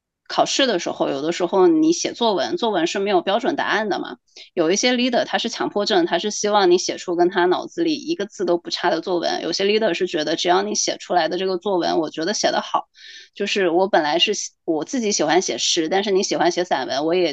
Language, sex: Chinese, female